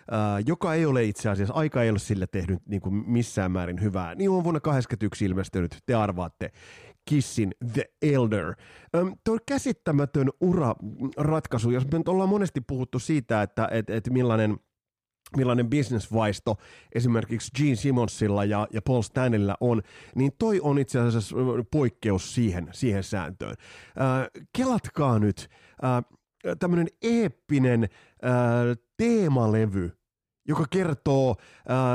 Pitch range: 105-140 Hz